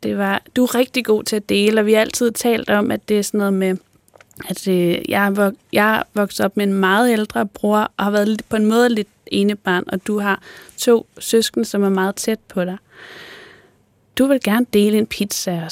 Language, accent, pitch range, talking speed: Danish, native, 195-230 Hz, 235 wpm